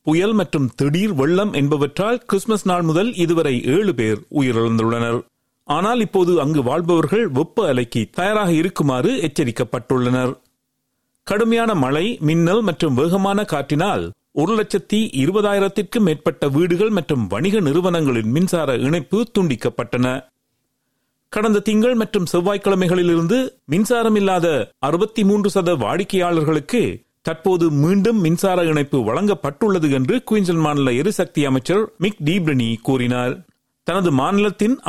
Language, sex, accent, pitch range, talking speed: Tamil, male, native, 120-195 Hz, 100 wpm